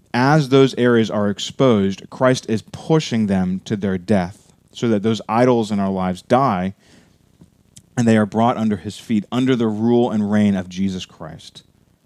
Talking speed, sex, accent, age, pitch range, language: 175 wpm, male, American, 30-49, 95-110 Hz, English